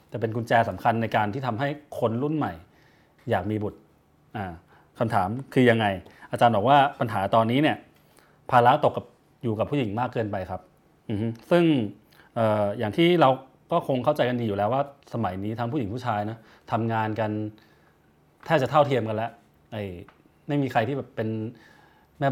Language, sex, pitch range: Thai, male, 105-140 Hz